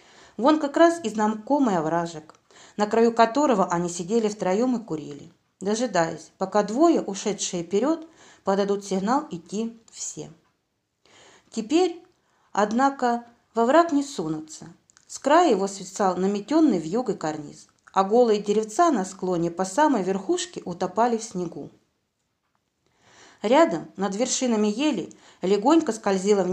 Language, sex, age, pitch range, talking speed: Russian, female, 40-59, 190-270 Hz, 125 wpm